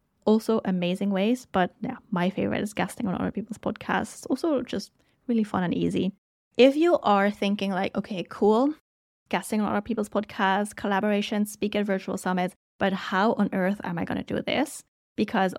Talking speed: 180 wpm